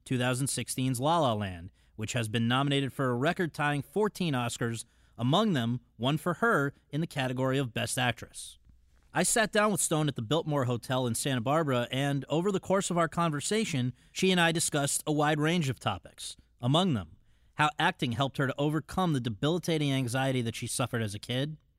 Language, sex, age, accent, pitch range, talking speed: English, male, 30-49, American, 120-150 Hz, 190 wpm